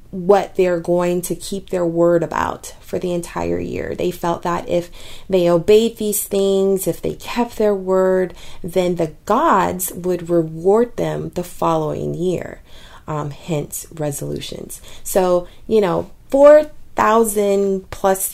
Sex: female